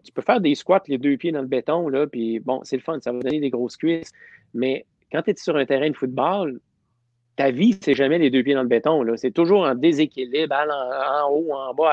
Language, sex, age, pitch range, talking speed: French, male, 30-49, 125-165 Hz, 260 wpm